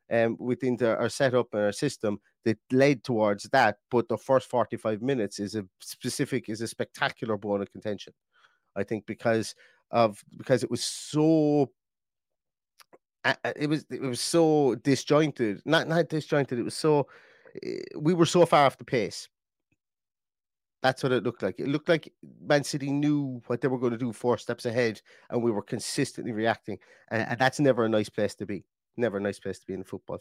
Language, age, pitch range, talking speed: English, 30-49, 115-150 Hz, 195 wpm